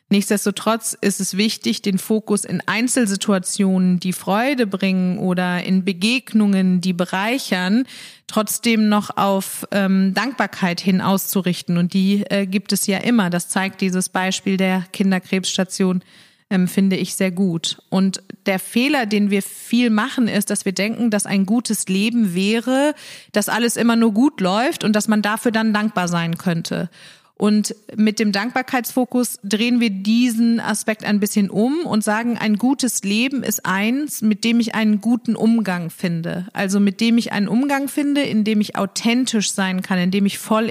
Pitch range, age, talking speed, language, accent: 190-230 Hz, 30-49, 165 wpm, German, German